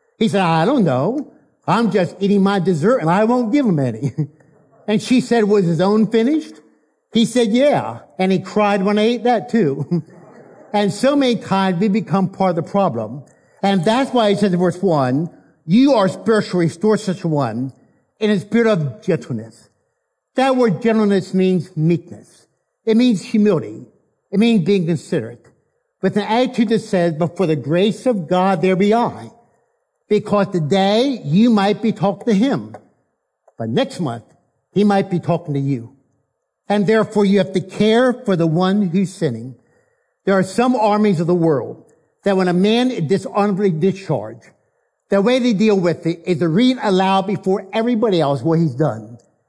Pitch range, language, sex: 170-225 Hz, English, male